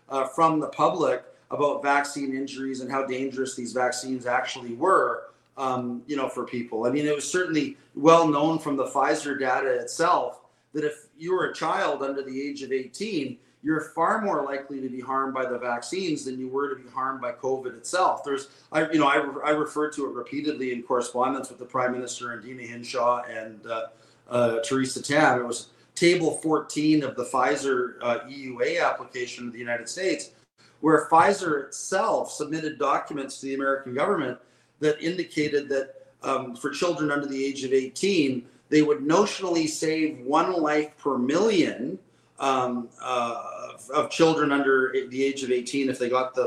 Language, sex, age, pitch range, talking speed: English, male, 30-49, 125-155 Hz, 185 wpm